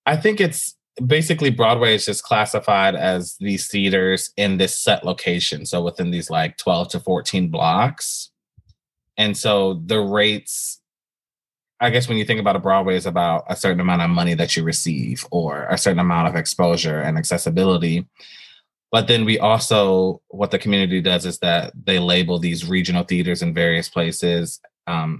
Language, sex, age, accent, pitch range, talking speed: English, male, 20-39, American, 85-110 Hz, 170 wpm